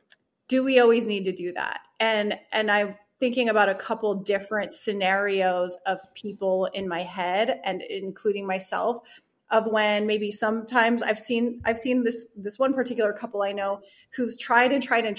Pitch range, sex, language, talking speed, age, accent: 190-230 Hz, female, English, 175 wpm, 30-49, American